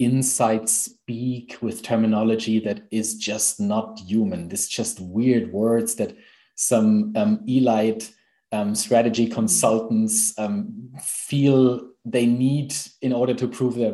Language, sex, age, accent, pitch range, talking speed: English, male, 30-49, German, 110-130 Hz, 125 wpm